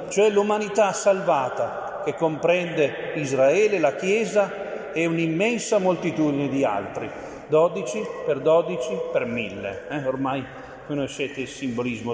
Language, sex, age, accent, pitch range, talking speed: Italian, male, 40-59, native, 150-225 Hz, 115 wpm